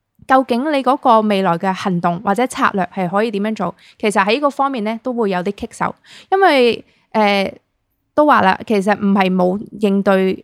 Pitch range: 190-245 Hz